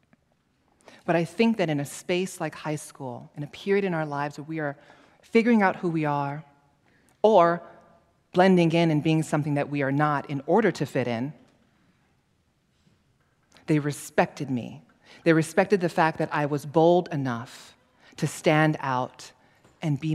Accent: American